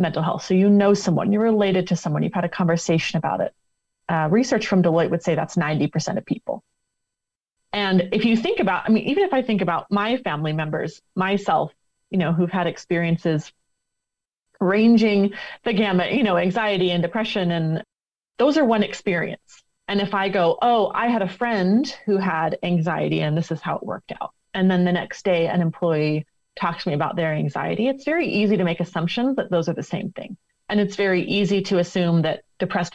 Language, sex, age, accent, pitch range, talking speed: English, female, 30-49, American, 165-210 Hz, 205 wpm